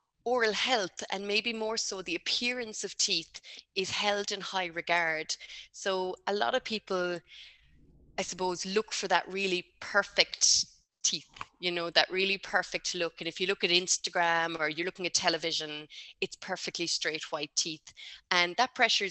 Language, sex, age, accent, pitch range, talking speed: English, female, 20-39, Irish, 175-230 Hz, 165 wpm